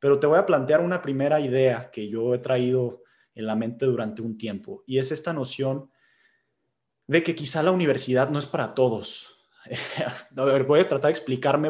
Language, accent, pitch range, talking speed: Spanish, Mexican, 130-195 Hz, 195 wpm